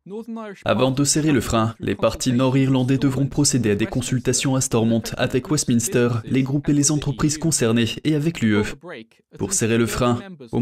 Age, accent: 20-39, French